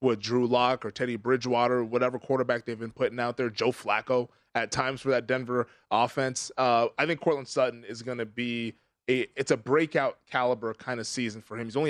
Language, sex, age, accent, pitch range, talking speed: English, male, 20-39, American, 120-140 Hz, 205 wpm